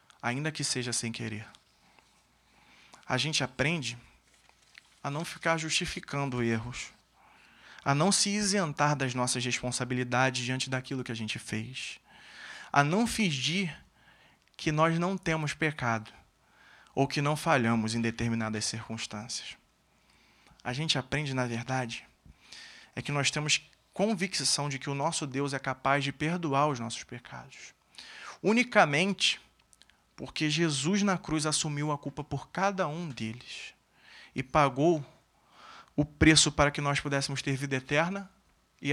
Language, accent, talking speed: Portuguese, Brazilian, 135 wpm